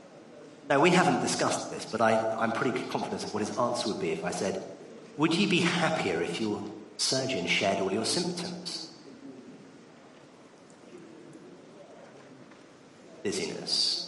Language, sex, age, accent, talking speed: English, male, 40-59, British, 130 wpm